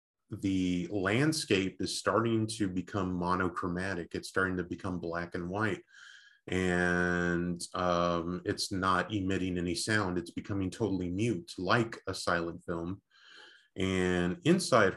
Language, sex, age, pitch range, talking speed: English, male, 30-49, 90-100 Hz, 125 wpm